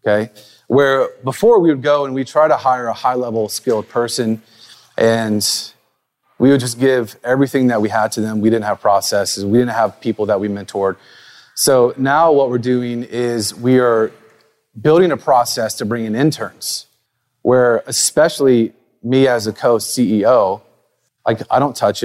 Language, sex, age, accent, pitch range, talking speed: English, male, 30-49, American, 110-135 Hz, 170 wpm